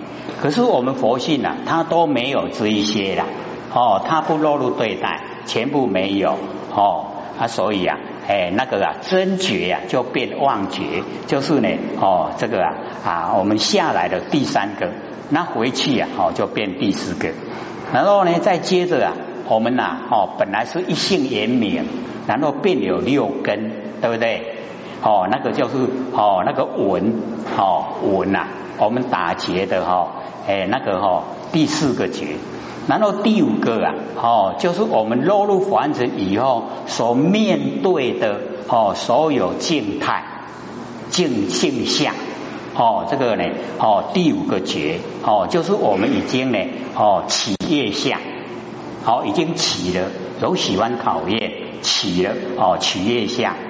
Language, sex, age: Chinese, male, 60-79